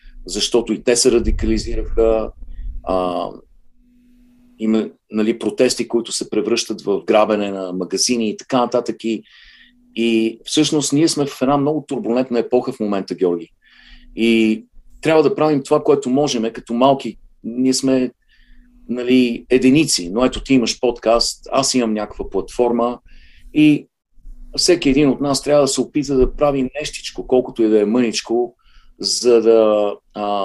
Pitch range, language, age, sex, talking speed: 110-140 Hz, Bulgarian, 40-59, male, 150 wpm